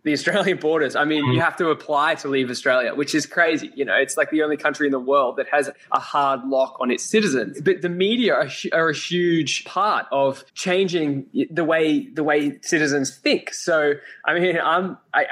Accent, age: Australian, 20-39